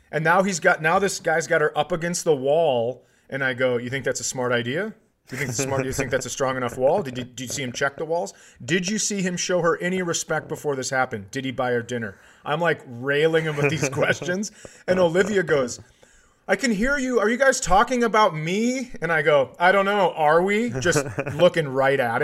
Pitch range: 135-195 Hz